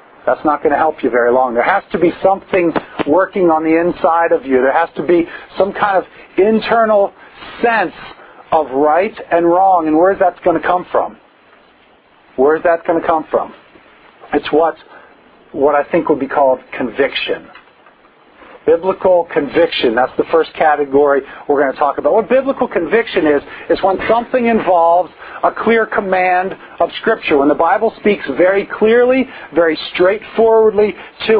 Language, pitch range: English, 155-200 Hz